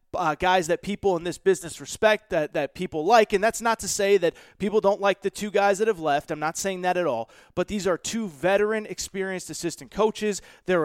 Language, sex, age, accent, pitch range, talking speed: English, male, 30-49, American, 175-210 Hz, 230 wpm